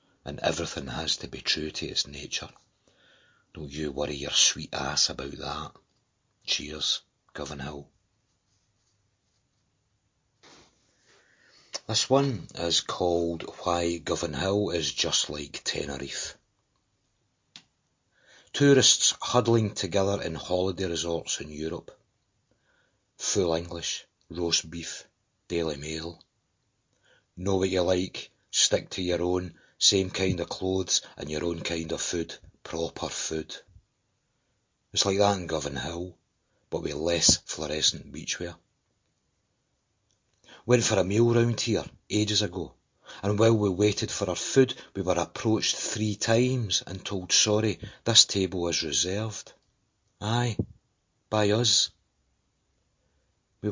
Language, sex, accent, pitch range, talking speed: English, male, British, 85-110 Hz, 120 wpm